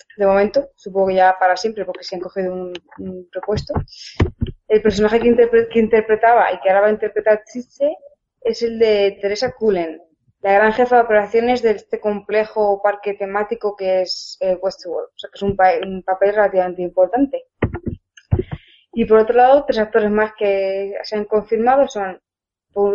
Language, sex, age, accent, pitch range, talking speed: Spanish, female, 20-39, Spanish, 200-235 Hz, 185 wpm